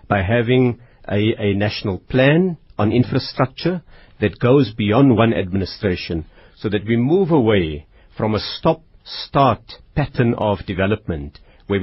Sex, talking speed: male, 125 wpm